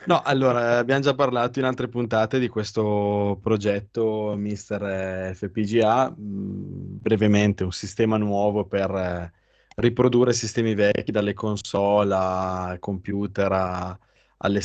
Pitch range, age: 100-115 Hz, 20-39